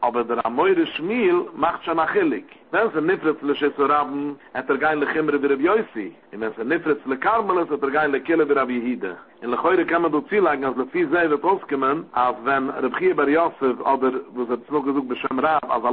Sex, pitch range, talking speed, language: male, 125-155 Hz, 190 wpm, English